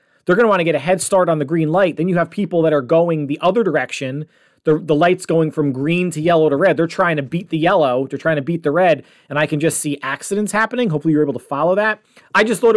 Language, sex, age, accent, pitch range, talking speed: English, male, 30-49, American, 145-190 Hz, 285 wpm